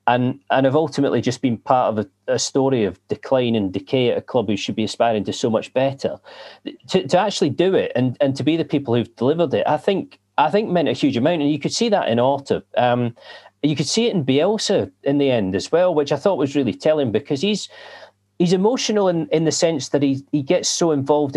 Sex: male